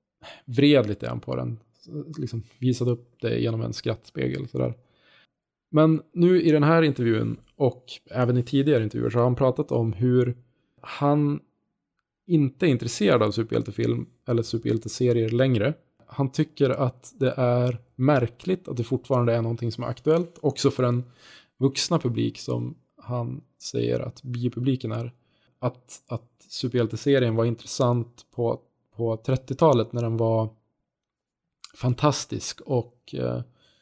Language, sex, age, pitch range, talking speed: Swedish, male, 20-39, 115-135 Hz, 135 wpm